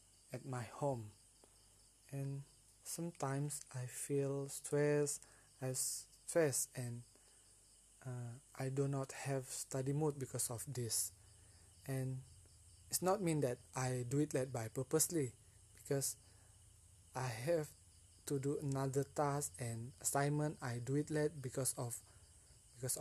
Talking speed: 125 wpm